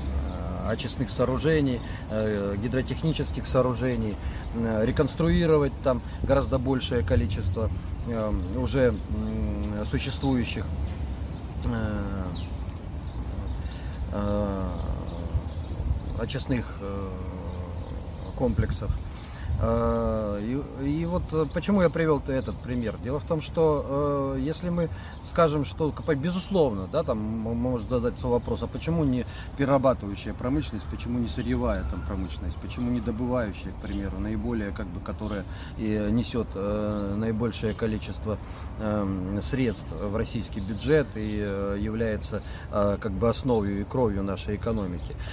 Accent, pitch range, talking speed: native, 95-130 Hz, 95 wpm